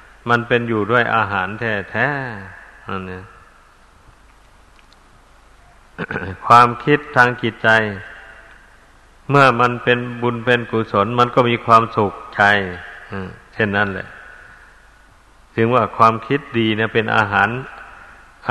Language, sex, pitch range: Thai, male, 105-125 Hz